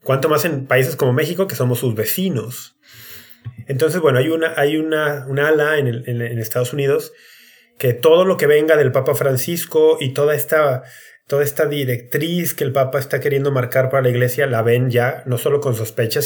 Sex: male